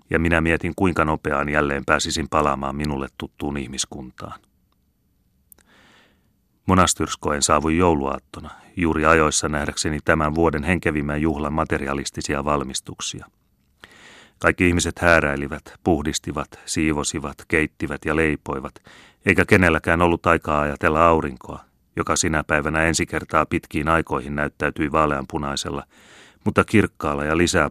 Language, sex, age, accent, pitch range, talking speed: Finnish, male, 30-49, native, 75-90 Hz, 110 wpm